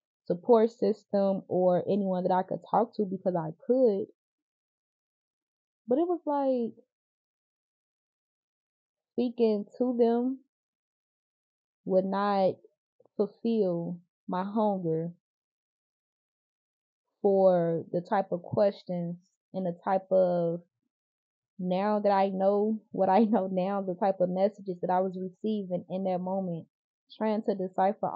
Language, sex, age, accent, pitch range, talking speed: English, female, 20-39, American, 185-220 Hz, 115 wpm